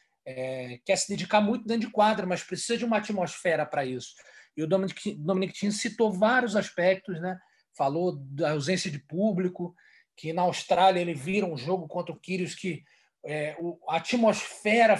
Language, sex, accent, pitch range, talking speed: Portuguese, male, Brazilian, 165-210 Hz, 170 wpm